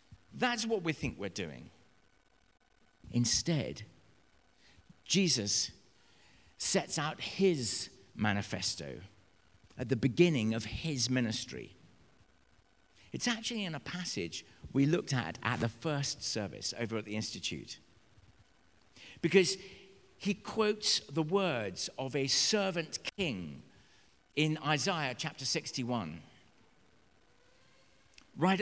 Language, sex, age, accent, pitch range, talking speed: English, male, 50-69, British, 110-160 Hz, 100 wpm